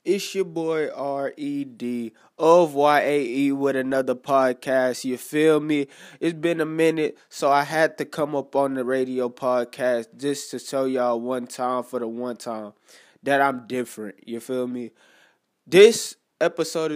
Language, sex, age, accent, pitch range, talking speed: English, male, 20-39, American, 125-150 Hz, 155 wpm